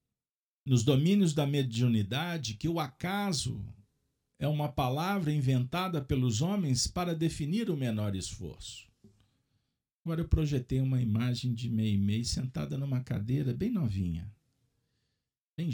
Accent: Brazilian